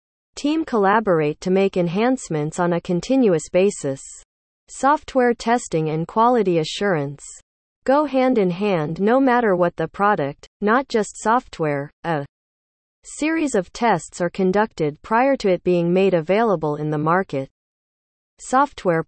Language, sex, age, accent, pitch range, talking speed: English, female, 40-59, American, 155-230 Hz, 130 wpm